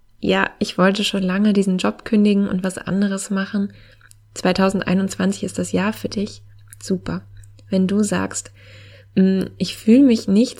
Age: 20-39